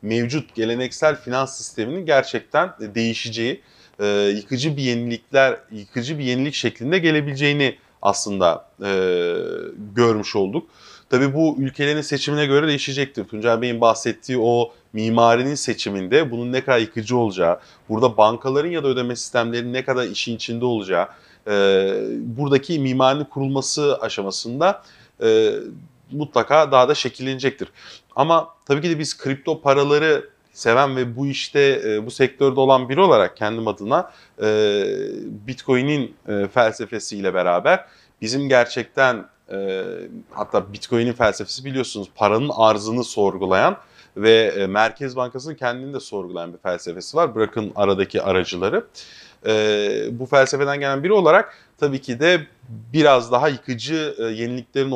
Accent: native